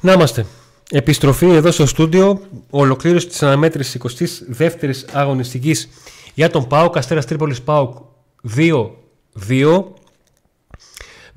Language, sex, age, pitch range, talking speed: Greek, male, 30-49, 115-150 Hz, 95 wpm